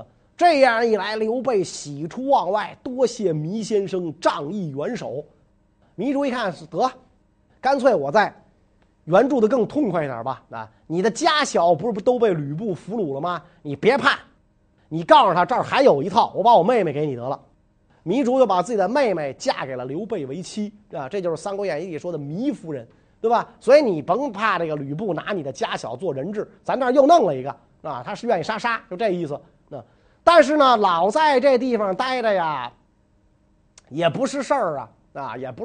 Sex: male